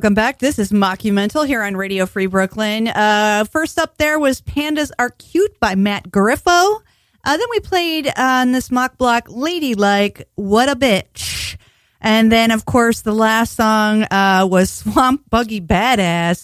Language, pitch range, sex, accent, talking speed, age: English, 185-250 Hz, female, American, 170 wpm, 30-49